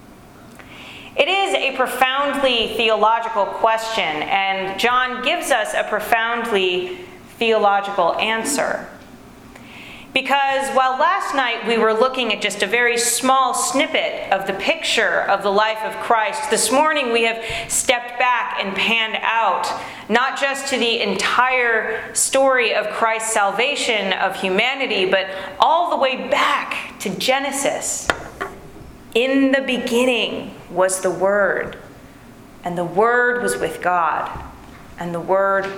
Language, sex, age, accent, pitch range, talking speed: English, female, 30-49, American, 195-260 Hz, 130 wpm